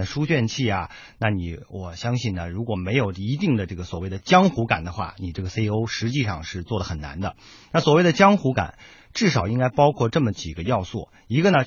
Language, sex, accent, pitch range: Chinese, male, native, 95-125 Hz